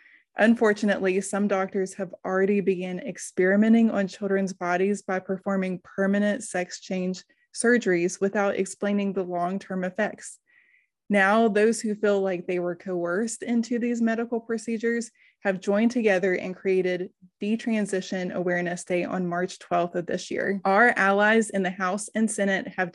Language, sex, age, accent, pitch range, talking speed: English, female, 20-39, American, 185-215 Hz, 145 wpm